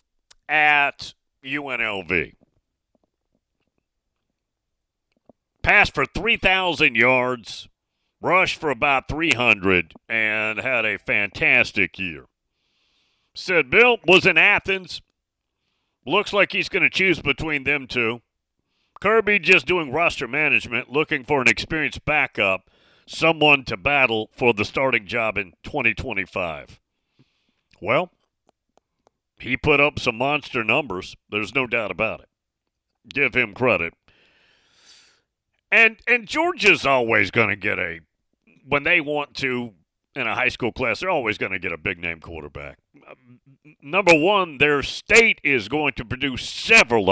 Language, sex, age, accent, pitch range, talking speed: English, male, 40-59, American, 110-160 Hz, 125 wpm